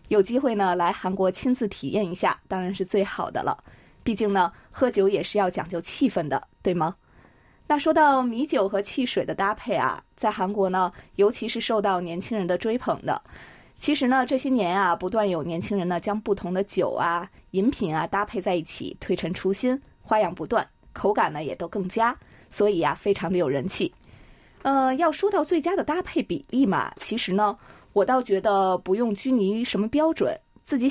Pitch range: 180-245 Hz